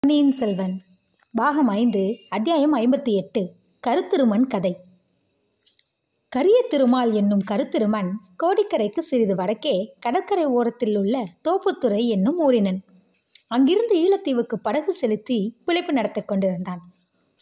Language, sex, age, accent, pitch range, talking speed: Tamil, female, 20-39, native, 200-275 Hz, 95 wpm